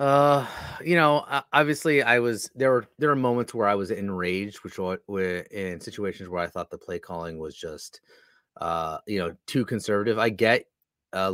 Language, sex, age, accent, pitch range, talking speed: English, male, 30-49, American, 90-115 Hz, 185 wpm